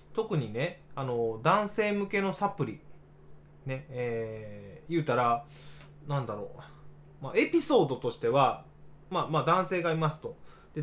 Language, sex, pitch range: Japanese, male, 120-155 Hz